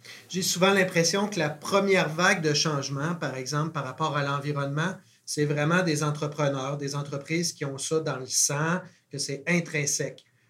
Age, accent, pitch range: 30-49, Canadian, 150-190 Hz